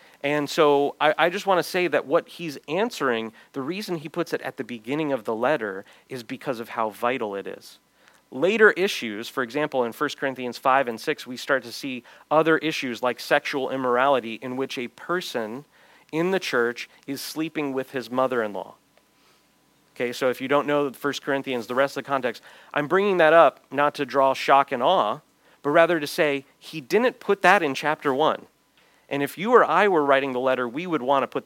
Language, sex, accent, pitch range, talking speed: English, male, American, 125-155 Hz, 210 wpm